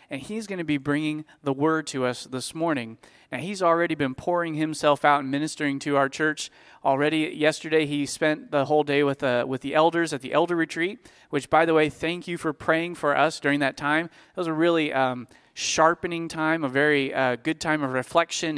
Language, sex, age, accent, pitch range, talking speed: English, male, 30-49, American, 140-170 Hz, 215 wpm